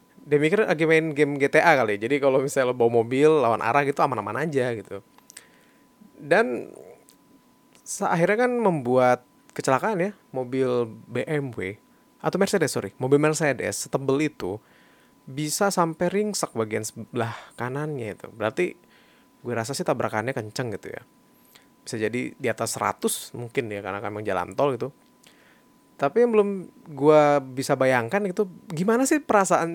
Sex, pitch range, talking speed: male, 125-200 Hz, 140 wpm